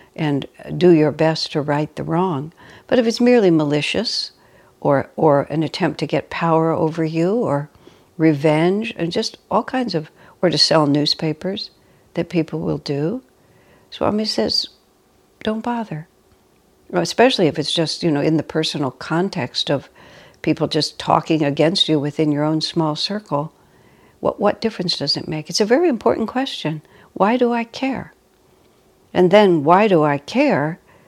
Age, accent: 60-79, American